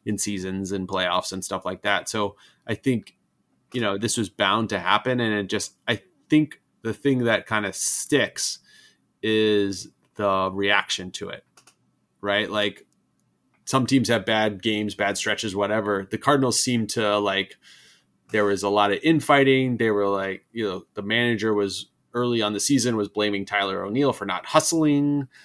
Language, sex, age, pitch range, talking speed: English, male, 30-49, 100-120 Hz, 175 wpm